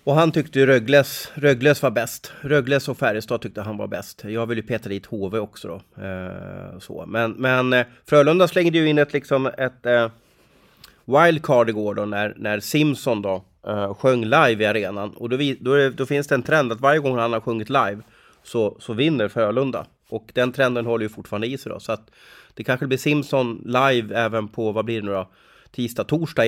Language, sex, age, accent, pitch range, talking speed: Swedish, male, 30-49, native, 110-140 Hz, 210 wpm